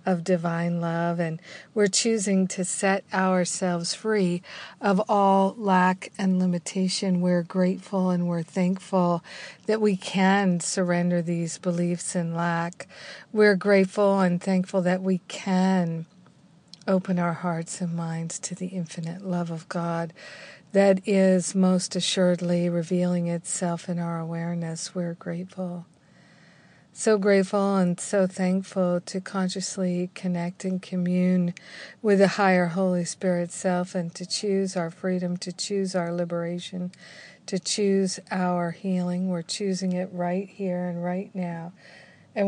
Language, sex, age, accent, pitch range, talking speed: English, female, 50-69, American, 175-190 Hz, 135 wpm